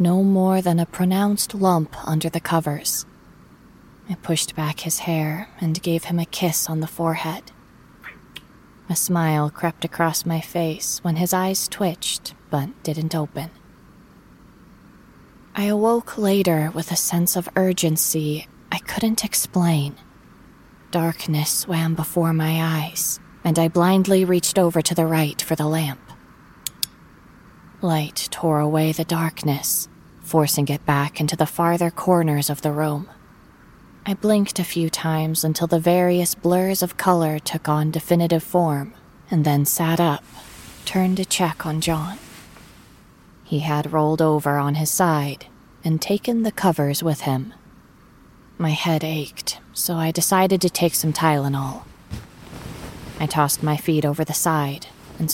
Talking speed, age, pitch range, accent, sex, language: 145 wpm, 20-39, 155-180 Hz, American, female, English